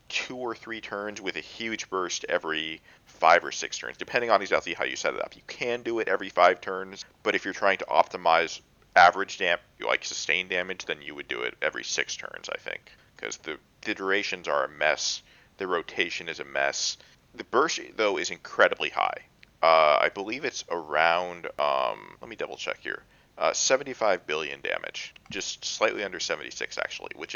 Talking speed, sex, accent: 195 wpm, male, American